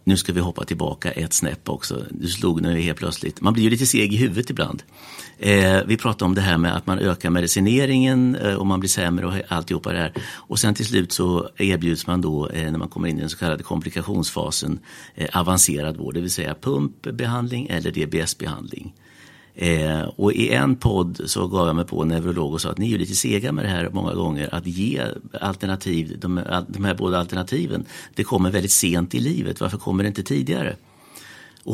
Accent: Swedish